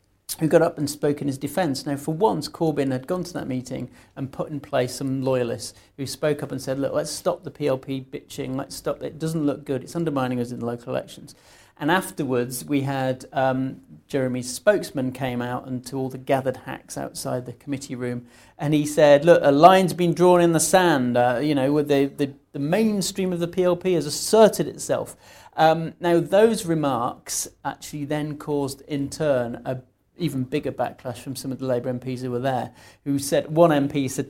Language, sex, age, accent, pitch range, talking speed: English, male, 40-59, British, 125-150 Hz, 205 wpm